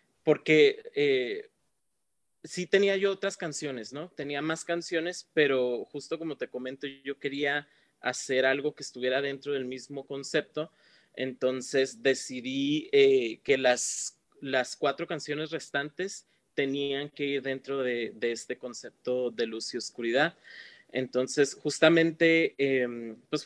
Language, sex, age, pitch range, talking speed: Spanish, male, 30-49, 130-155 Hz, 130 wpm